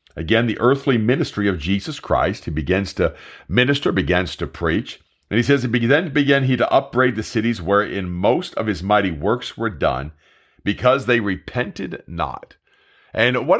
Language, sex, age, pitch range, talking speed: English, male, 50-69, 95-130 Hz, 170 wpm